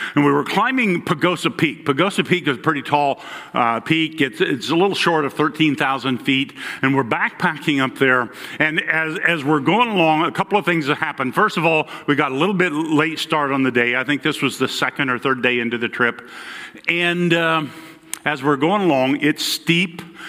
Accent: American